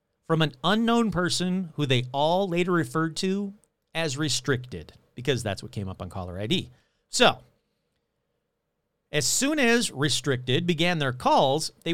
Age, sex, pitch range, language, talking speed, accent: 40-59, male, 130-190 Hz, English, 145 wpm, American